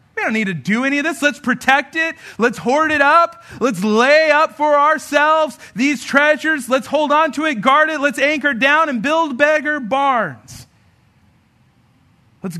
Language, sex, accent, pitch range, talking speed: English, male, American, 160-260 Hz, 175 wpm